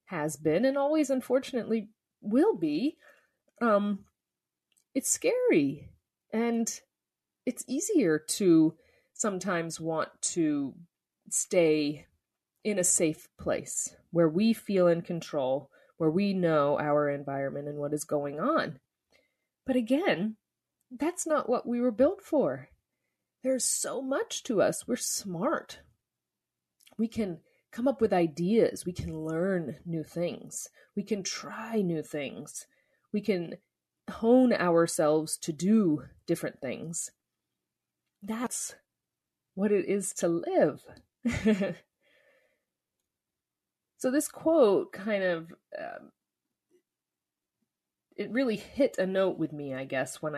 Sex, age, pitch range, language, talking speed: female, 30-49, 165-250 Hz, English, 120 wpm